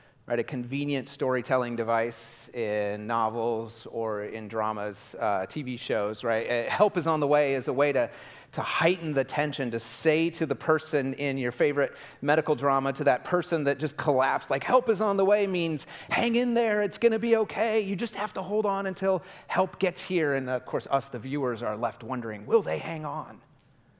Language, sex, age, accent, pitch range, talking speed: English, male, 30-49, American, 125-160 Hz, 205 wpm